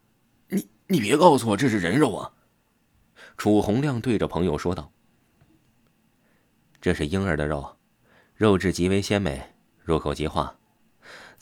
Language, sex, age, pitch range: Chinese, male, 20-39, 80-105 Hz